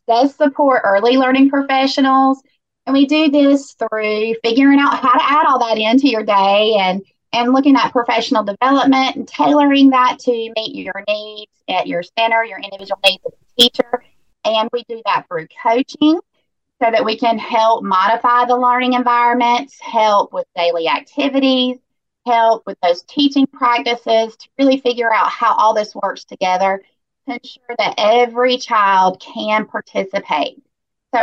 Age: 30-49